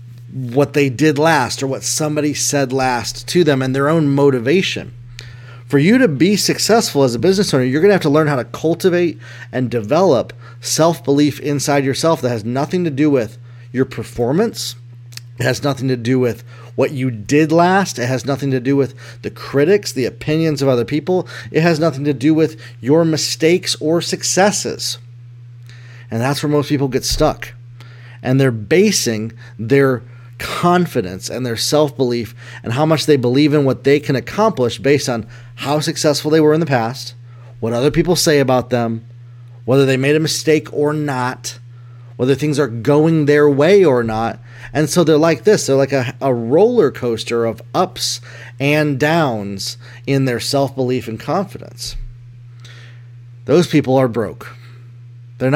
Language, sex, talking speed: English, male, 170 wpm